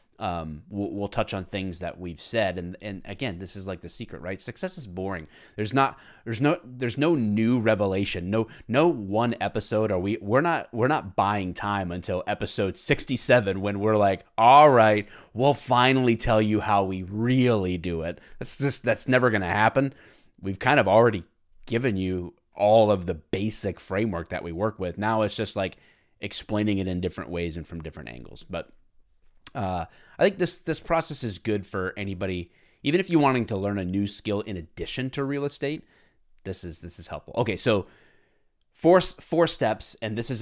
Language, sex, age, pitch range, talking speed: English, male, 20-39, 90-120 Hz, 195 wpm